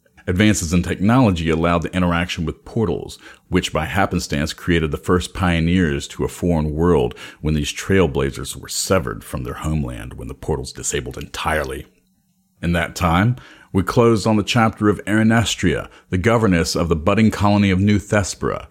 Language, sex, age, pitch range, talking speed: English, male, 40-59, 85-110 Hz, 165 wpm